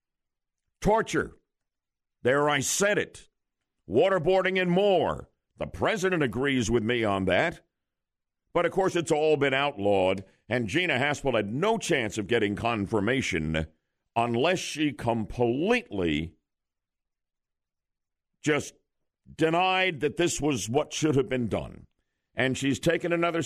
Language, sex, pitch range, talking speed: English, male, 100-150 Hz, 125 wpm